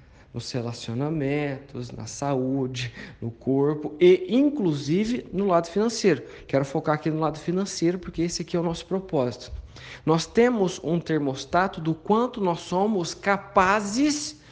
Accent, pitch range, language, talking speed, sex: Brazilian, 145-205 Hz, Portuguese, 135 wpm, male